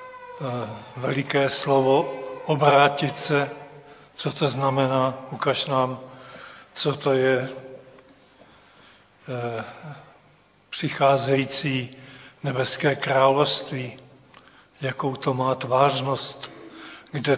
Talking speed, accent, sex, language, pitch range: 70 wpm, native, male, Czech, 130-140 Hz